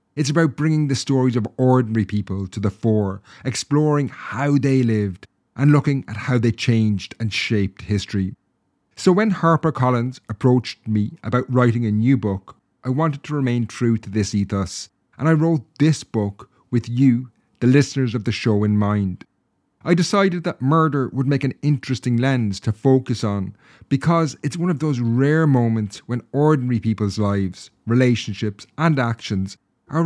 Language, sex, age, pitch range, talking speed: English, male, 30-49, 110-140 Hz, 165 wpm